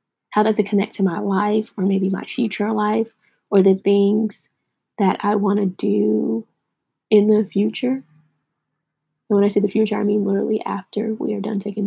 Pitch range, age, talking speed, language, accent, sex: 195-220 Hz, 20-39, 185 wpm, English, American, female